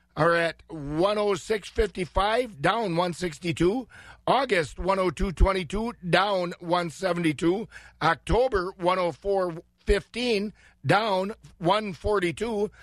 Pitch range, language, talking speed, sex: 170-205 Hz, English, 60 wpm, male